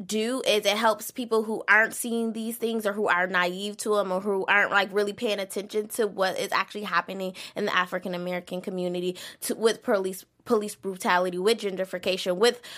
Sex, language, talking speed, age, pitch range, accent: female, English, 195 wpm, 20-39, 185-215 Hz, American